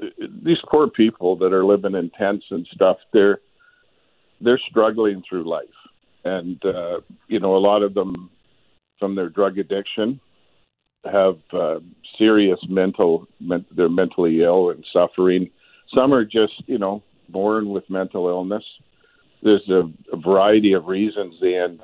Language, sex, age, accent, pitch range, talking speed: English, male, 50-69, American, 95-110 Hz, 145 wpm